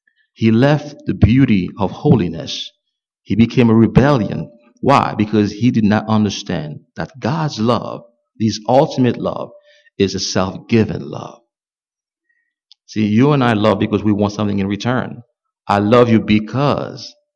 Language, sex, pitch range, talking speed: English, male, 100-145 Hz, 140 wpm